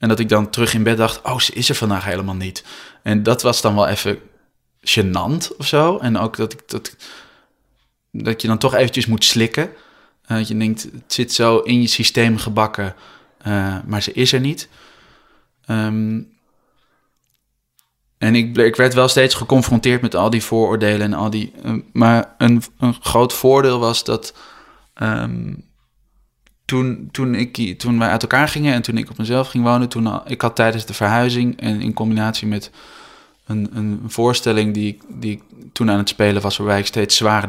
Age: 20-39